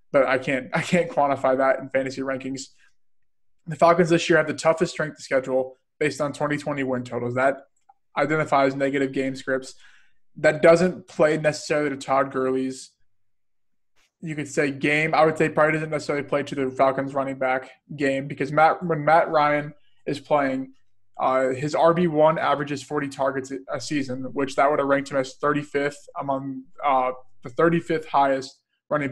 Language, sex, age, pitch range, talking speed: English, male, 20-39, 130-150 Hz, 170 wpm